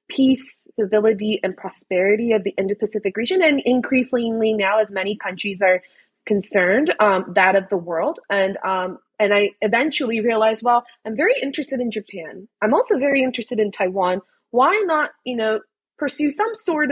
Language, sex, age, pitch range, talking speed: English, female, 20-39, 205-255 Hz, 165 wpm